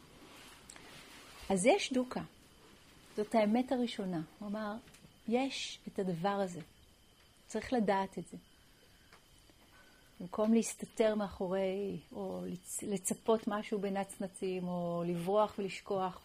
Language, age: Hebrew, 40-59